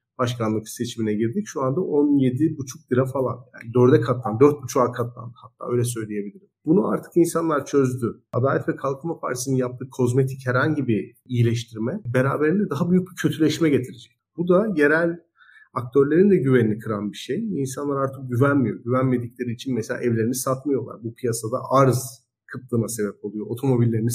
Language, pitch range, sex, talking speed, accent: Turkish, 120-150 Hz, male, 150 wpm, native